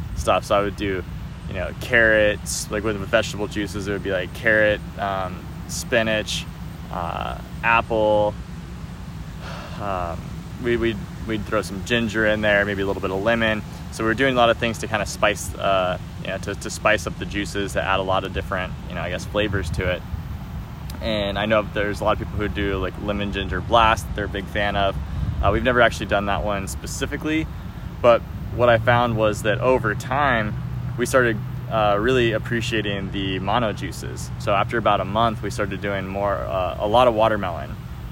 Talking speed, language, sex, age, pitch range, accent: 200 wpm, English, male, 20-39, 95-110 Hz, American